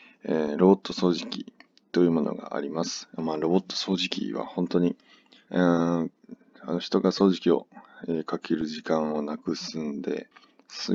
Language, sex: Japanese, male